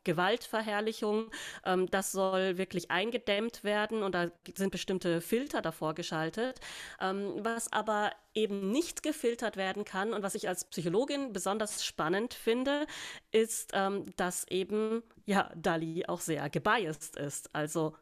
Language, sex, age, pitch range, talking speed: German, female, 30-49, 180-220 Hz, 135 wpm